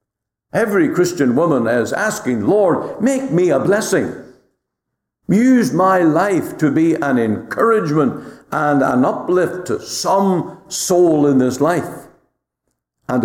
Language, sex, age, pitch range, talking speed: English, male, 60-79, 105-140 Hz, 120 wpm